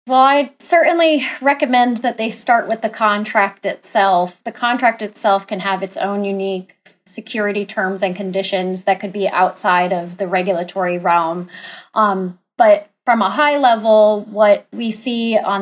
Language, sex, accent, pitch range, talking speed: English, female, American, 195-235 Hz, 160 wpm